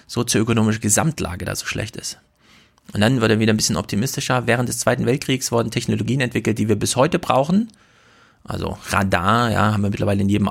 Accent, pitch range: German, 105-125 Hz